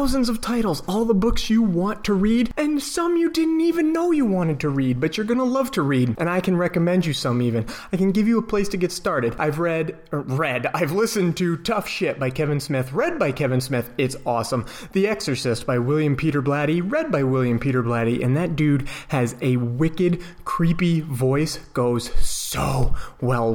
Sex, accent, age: male, American, 30-49